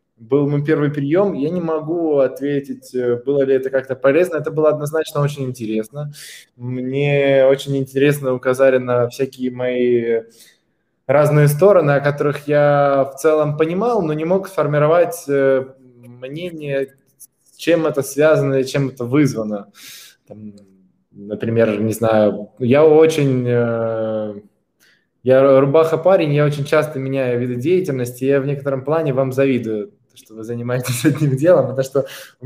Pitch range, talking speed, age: 130-155 Hz, 135 wpm, 20-39